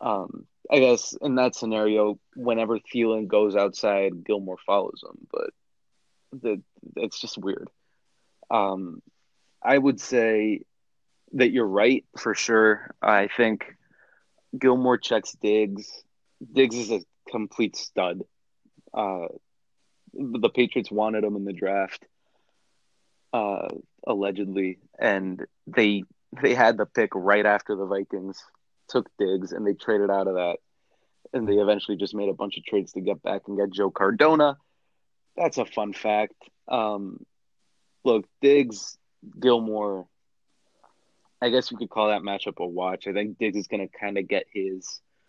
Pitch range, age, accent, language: 100-120 Hz, 30-49, American, English